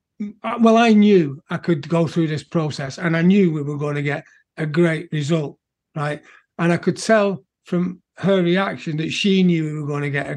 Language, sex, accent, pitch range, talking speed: English, male, British, 160-210 Hz, 215 wpm